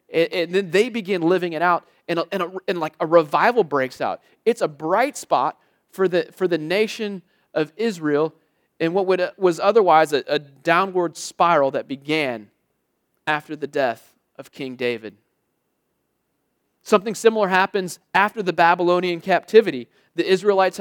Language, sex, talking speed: English, male, 140 wpm